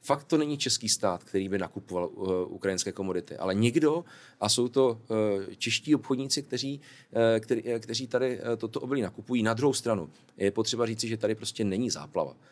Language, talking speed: Czech, 180 wpm